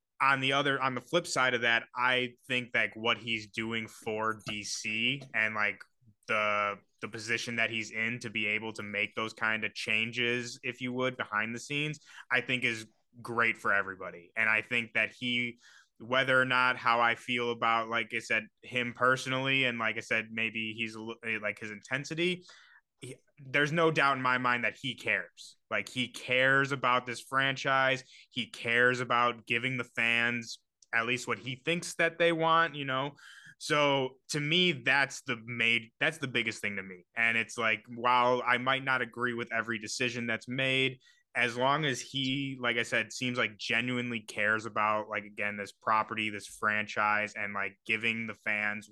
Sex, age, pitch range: male, 20-39, 110-130 Hz